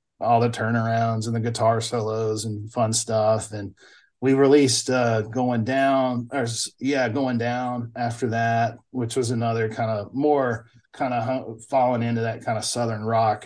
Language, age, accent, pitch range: English, 40-59, American, 110-130 Hz